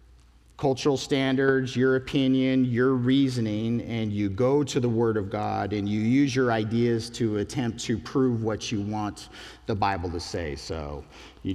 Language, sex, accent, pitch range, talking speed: English, male, American, 95-130 Hz, 165 wpm